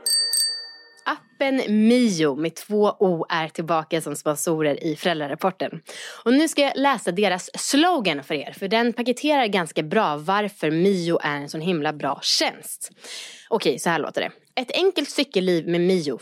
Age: 20-39